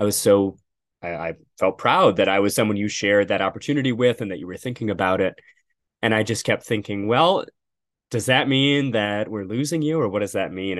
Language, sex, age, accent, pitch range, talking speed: English, male, 20-39, American, 95-130 Hz, 230 wpm